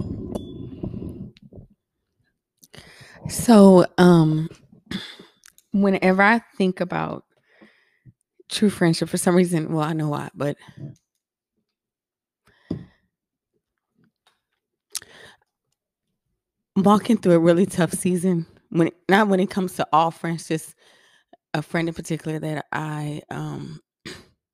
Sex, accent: female, American